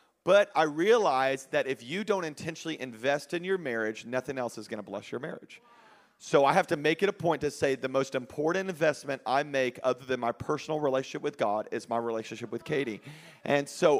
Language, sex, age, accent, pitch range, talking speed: English, male, 40-59, American, 135-170 Hz, 215 wpm